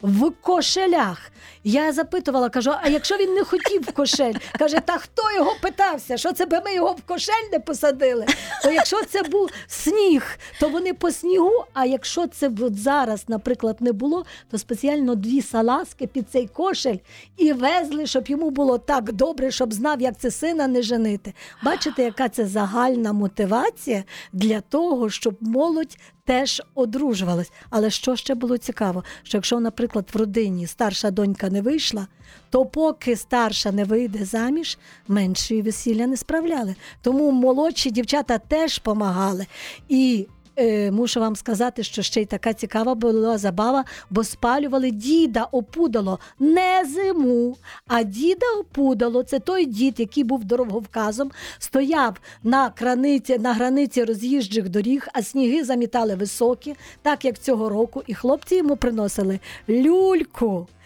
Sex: female